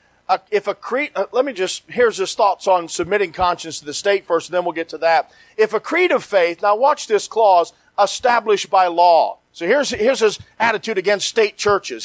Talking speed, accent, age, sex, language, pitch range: 210 wpm, American, 40-59, male, English, 180-255 Hz